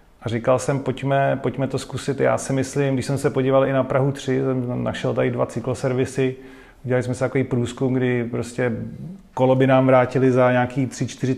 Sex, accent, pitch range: male, native, 120-135 Hz